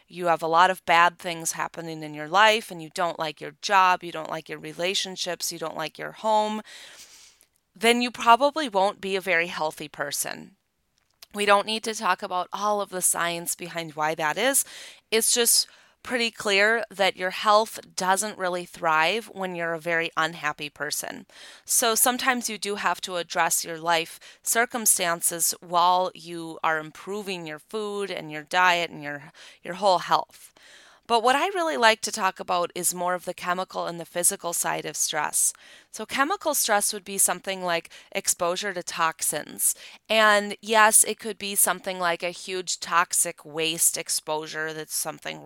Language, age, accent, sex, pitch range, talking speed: English, 30-49, American, female, 165-205 Hz, 175 wpm